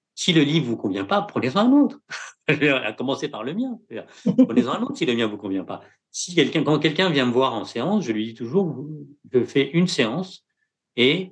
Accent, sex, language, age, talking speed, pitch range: French, male, French, 50-69, 225 wpm, 115-175 Hz